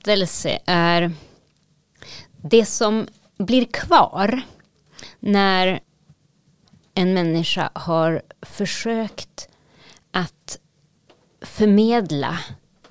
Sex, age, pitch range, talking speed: female, 30-49, 160-210 Hz, 55 wpm